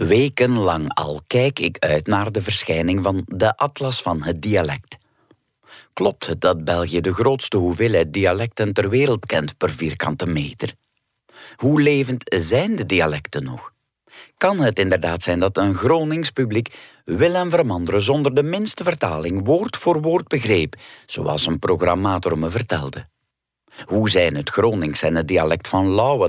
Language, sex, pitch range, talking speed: Dutch, male, 85-130 Hz, 155 wpm